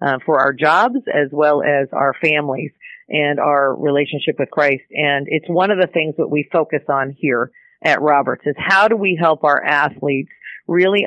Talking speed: 190 wpm